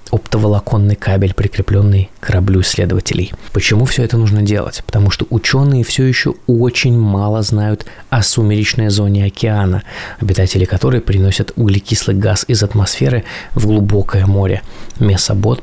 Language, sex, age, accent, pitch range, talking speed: Russian, male, 20-39, native, 100-115 Hz, 130 wpm